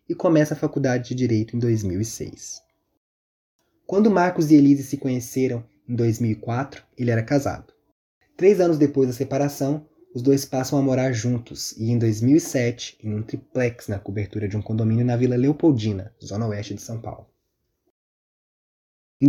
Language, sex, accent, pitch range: Portuguese, male, Brazilian, 115-150 Hz